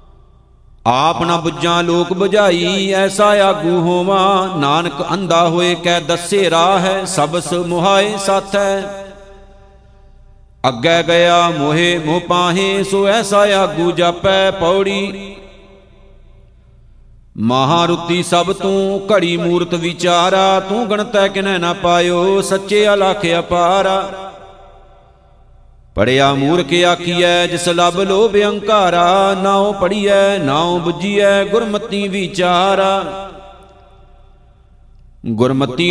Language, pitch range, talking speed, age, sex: Punjabi, 170-195 Hz, 95 wpm, 50-69, male